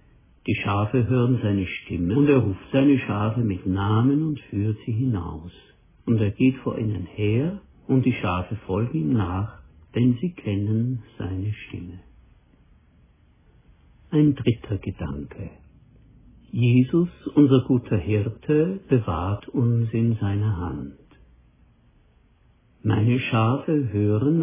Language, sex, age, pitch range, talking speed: German, male, 60-79, 95-130 Hz, 120 wpm